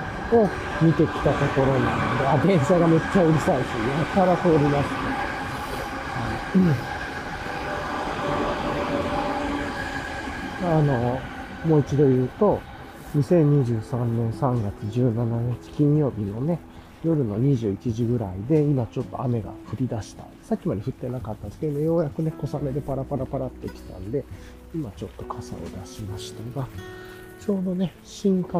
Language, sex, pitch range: Japanese, male, 115-160 Hz